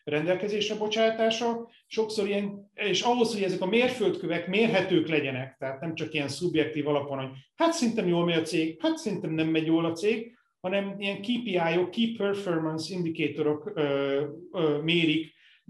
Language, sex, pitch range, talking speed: Hungarian, male, 150-200 Hz, 150 wpm